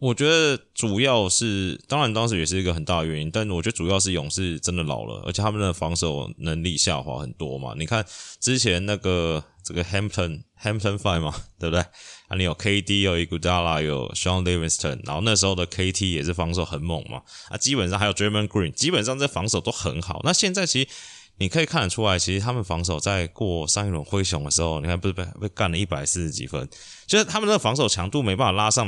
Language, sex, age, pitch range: Chinese, male, 20-39, 85-110 Hz